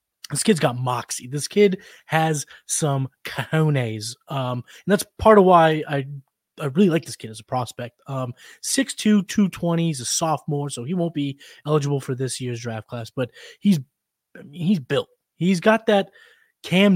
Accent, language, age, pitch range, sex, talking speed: American, English, 20-39, 135-175 Hz, male, 170 wpm